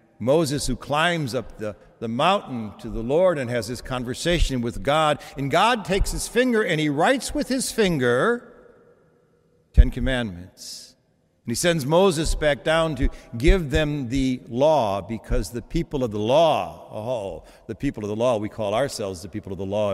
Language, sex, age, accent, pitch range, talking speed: English, male, 60-79, American, 110-145 Hz, 180 wpm